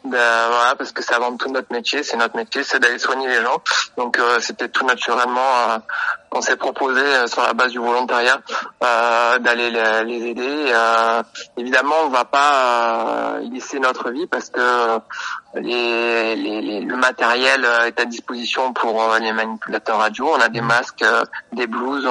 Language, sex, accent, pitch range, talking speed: French, male, French, 115-125 Hz, 190 wpm